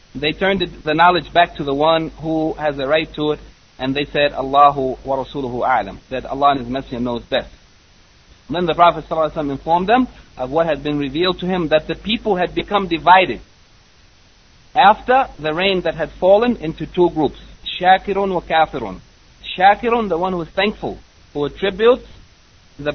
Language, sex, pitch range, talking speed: English, male, 130-165 Hz, 180 wpm